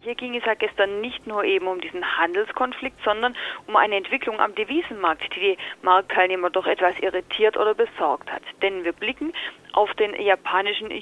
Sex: female